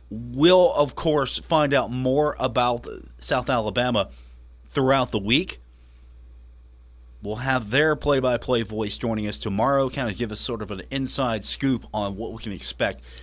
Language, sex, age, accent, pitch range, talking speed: English, male, 40-59, American, 105-135 Hz, 155 wpm